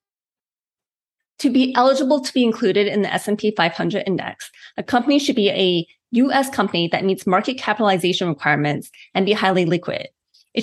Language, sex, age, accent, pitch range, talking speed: English, female, 30-49, American, 185-235 Hz, 160 wpm